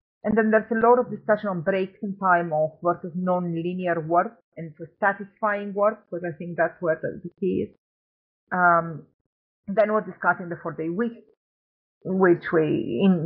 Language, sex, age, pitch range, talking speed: English, female, 40-59, 165-215 Hz, 165 wpm